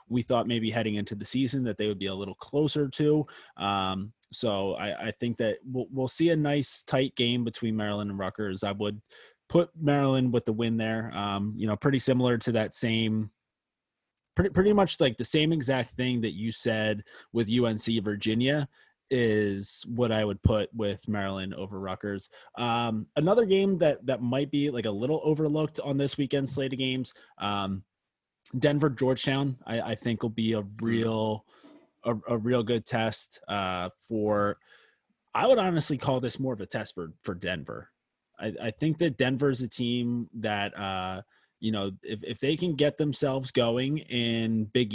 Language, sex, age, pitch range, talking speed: English, male, 20-39, 110-140 Hz, 185 wpm